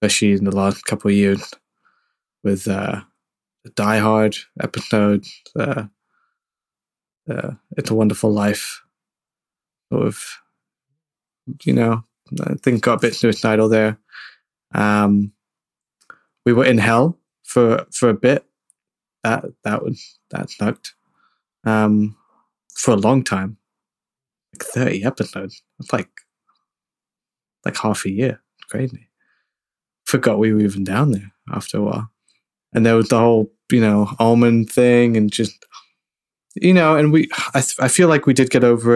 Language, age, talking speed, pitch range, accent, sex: English, 20-39, 145 wpm, 105-120 Hz, British, male